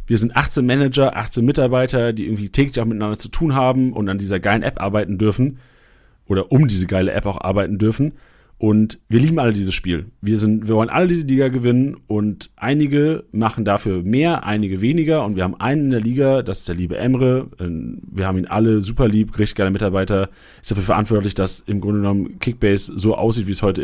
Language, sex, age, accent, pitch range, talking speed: German, male, 40-59, German, 95-125 Hz, 210 wpm